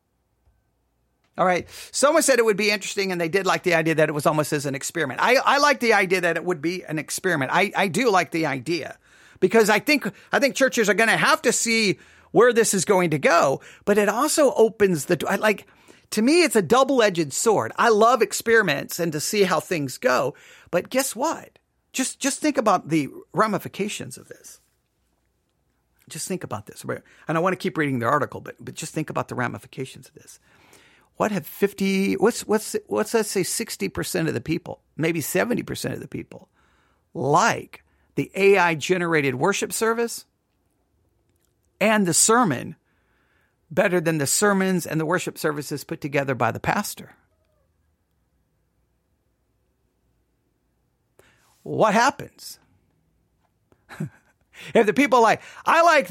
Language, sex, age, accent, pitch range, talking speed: English, male, 40-59, American, 135-215 Hz, 170 wpm